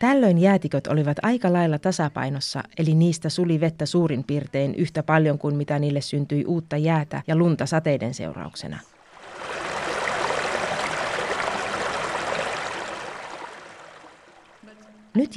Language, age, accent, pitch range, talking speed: Finnish, 30-49, native, 150-190 Hz, 100 wpm